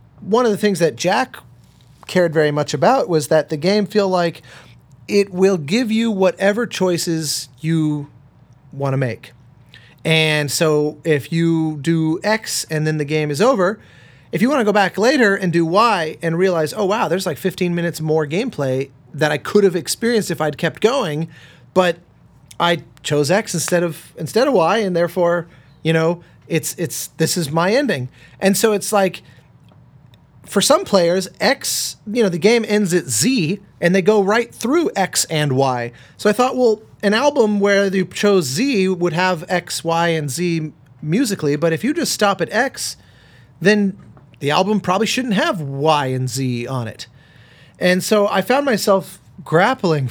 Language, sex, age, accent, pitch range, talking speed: English, male, 30-49, American, 145-200 Hz, 180 wpm